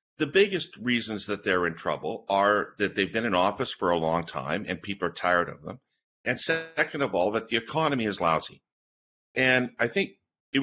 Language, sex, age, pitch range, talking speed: English, male, 50-69, 100-130 Hz, 205 wpm